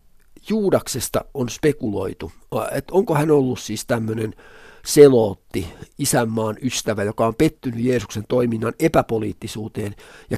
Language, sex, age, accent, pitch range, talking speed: Finnish, male, 50-69, native, 105-130 Hz, 110 wpm